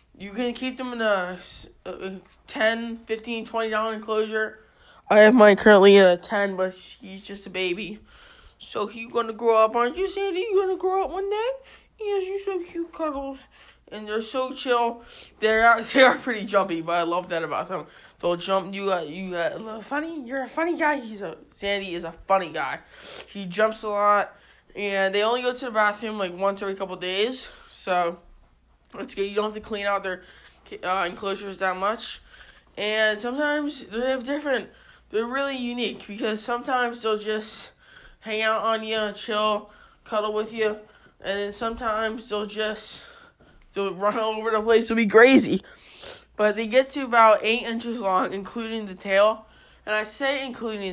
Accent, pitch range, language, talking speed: American, 200-245 Hz, English, 185 wpm